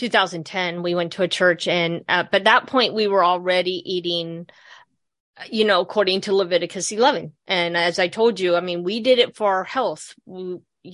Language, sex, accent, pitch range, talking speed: English, female, American, 175-200 Hz, 190 wpm